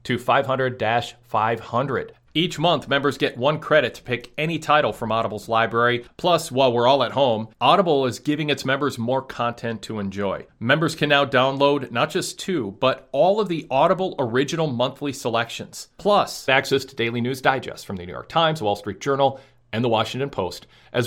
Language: English